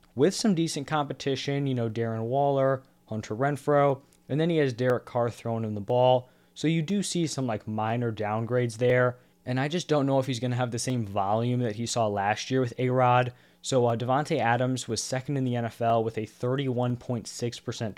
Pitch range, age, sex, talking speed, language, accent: 115-135 Hz, 20-39, male, 205 wpm, English, American